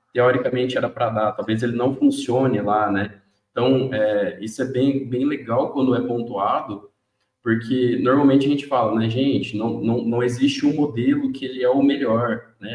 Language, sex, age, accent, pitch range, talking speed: Portuguese, male, 20-39, Brazilian, 115-145 Hz, 185 wpm